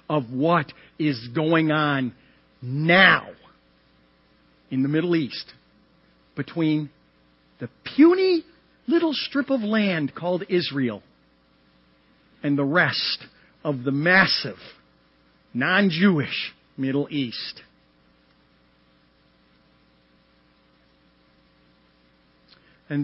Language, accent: English, American